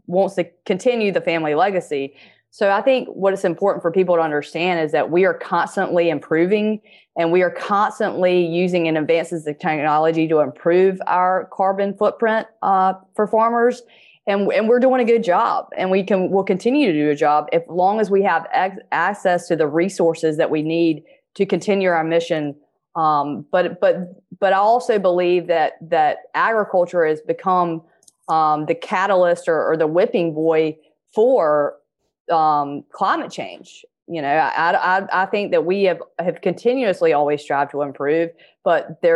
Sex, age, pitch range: female, 20-39, 160-200 Hz